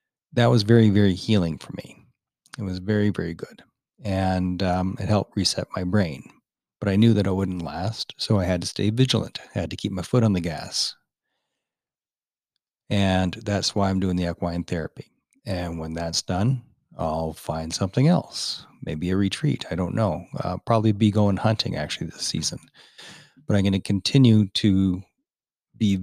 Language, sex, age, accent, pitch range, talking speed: English, male, 40-59, American, 90-110 Hz, 180 wpm